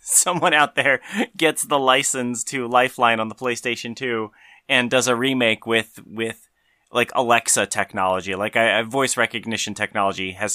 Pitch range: 95-130 Hz